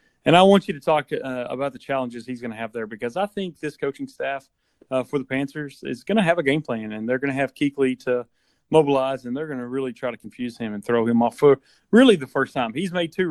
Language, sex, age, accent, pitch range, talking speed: English, male, 30-49, American, 120-160 Hz, 275 wpm